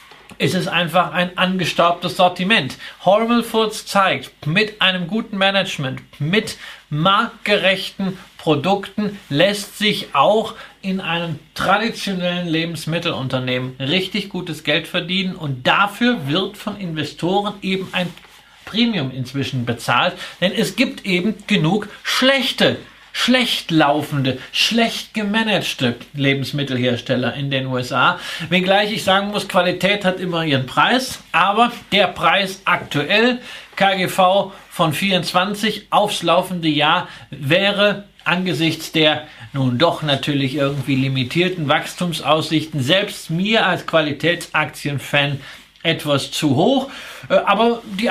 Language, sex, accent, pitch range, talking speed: German, male, German, 150-200 Hz, 110 wpm